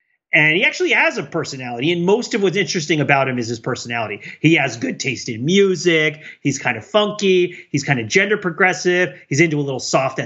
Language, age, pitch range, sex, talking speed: English, 30-49, 135-190 Hz, male, 210 wpm